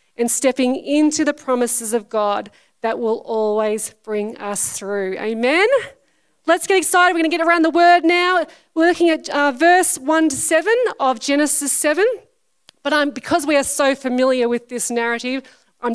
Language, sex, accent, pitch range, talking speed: English, female, Australian, 225-310 Hz, 175 wpm